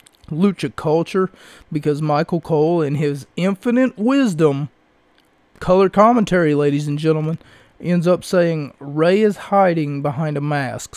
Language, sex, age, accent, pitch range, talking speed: English, male, 30-49, American, 140-170 Hz, 125 wpm